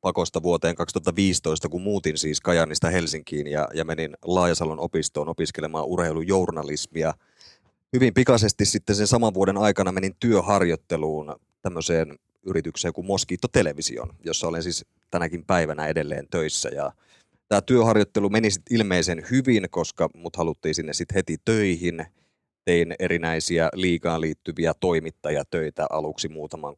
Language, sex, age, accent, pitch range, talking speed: Finnish, male, 30-49, native, 80-95 Hz, 125 wpm